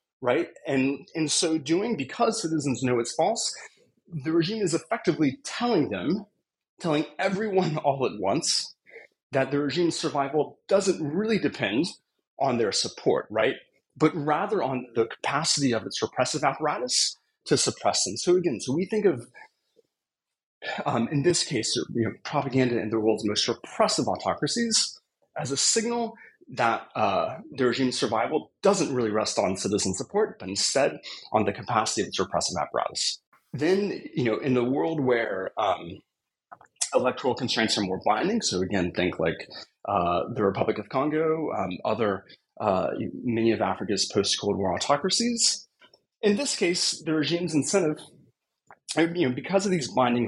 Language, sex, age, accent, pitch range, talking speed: English, male, 30-49, American, 125-185 Hz, 155 wpm